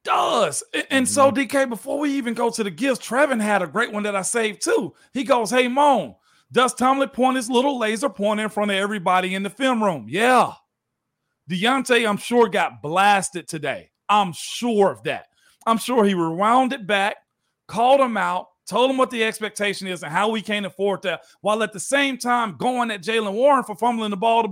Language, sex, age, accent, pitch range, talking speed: English, male, 40-59, American, 185-240 Hz, 210 wpm